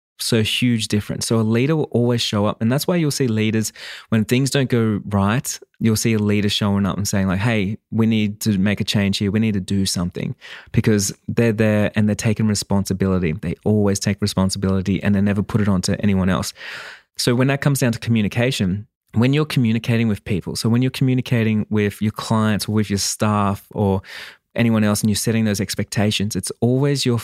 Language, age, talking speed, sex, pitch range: English, 20-39, 210 wpm, male, 105-120 Hz